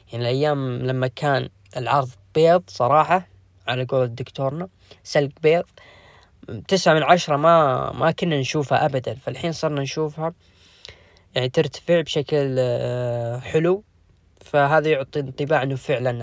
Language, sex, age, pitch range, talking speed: Arabic, female, 10-29, 125-165 Hz, 120 wpm